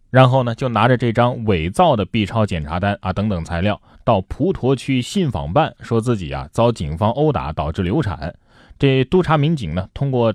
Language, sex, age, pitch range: Chinese, male, 20-39, 90-125 Hz